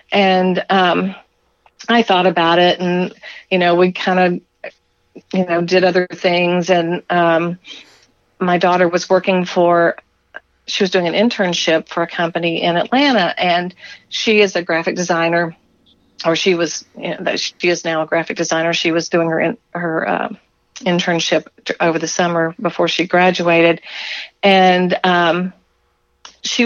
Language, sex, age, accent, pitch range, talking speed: English, female, 40-59, American, 170-200 Hz, 155 wpm